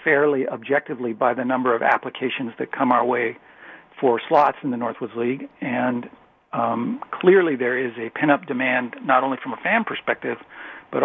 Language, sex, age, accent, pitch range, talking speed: English, male, 50-69, American, 125-145 Hz, 175 wpm